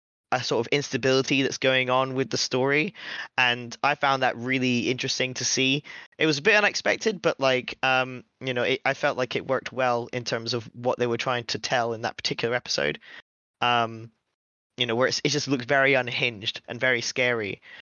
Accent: British